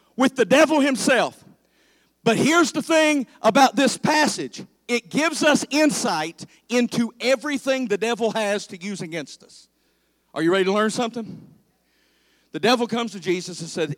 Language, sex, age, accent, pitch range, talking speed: English, male, 50-69, American, 150-225 Hz, 160 wpm